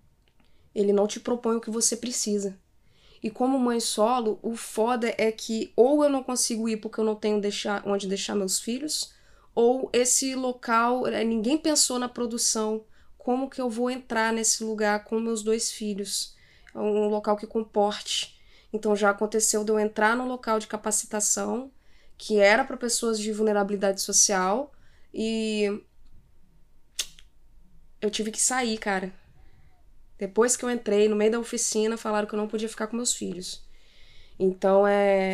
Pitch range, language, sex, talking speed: 205-230 Hz, Portuguese, female, 160 wpm